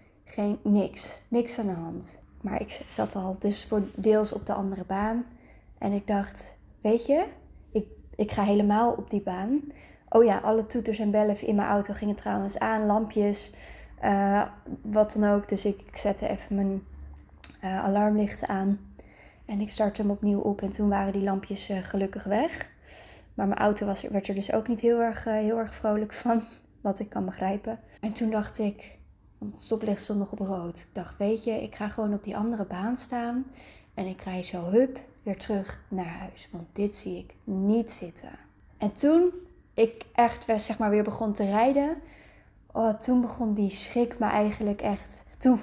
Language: Dutch